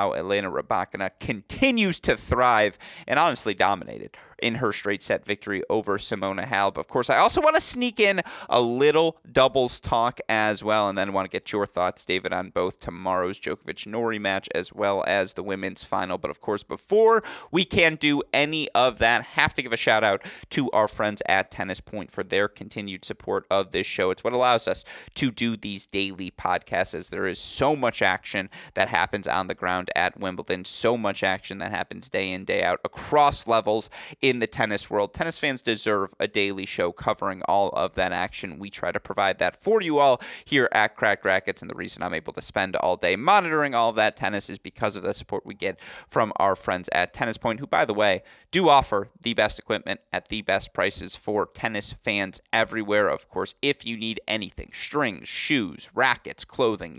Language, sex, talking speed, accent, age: English, male, 205 wpm, American, 30-49